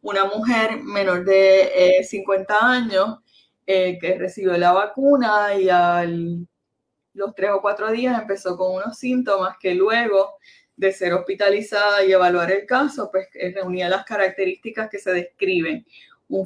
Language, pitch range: Spanish, 180-210 Hz